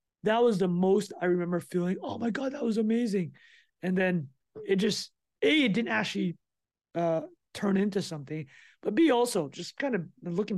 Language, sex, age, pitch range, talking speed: English, male, 20-39, 160-195 Hz, 180 wpm